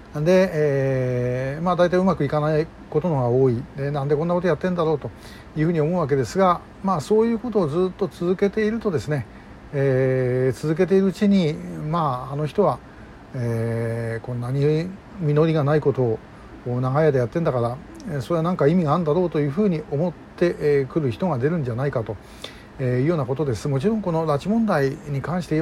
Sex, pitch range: male, 130-170 Hz